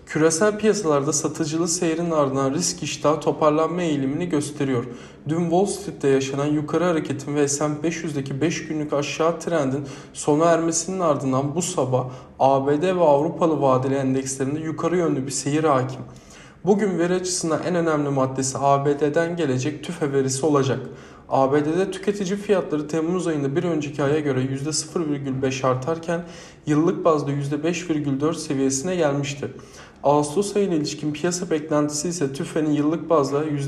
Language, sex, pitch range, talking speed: Turkish, male, 140-165 Hz, 130 wpm